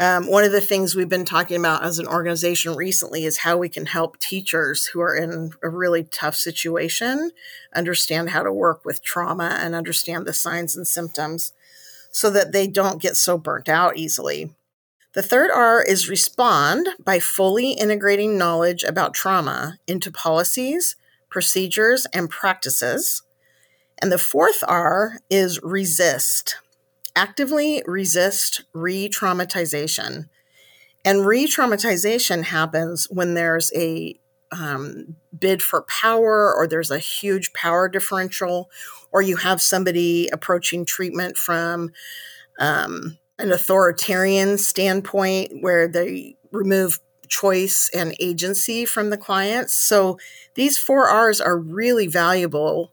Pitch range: 170-200 Hz